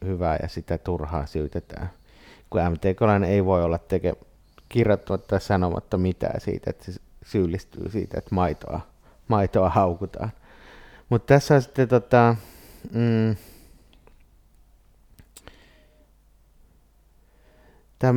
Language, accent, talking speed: Finnish, native, 95 wpm